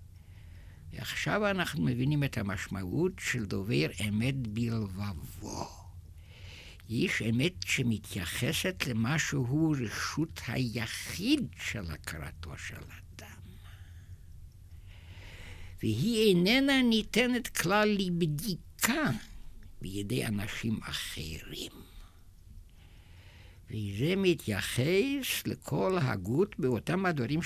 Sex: male